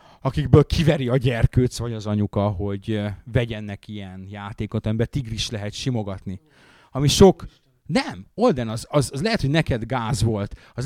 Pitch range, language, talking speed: 105-145 Hz, Hungarian, 160 wpm